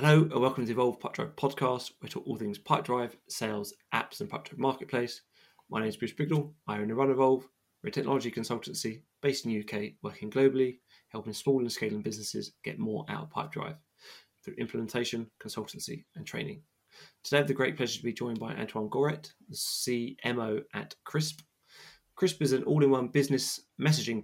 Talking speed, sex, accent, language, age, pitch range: 190 wpm, male, British, English, 20-39, 115-140 Hz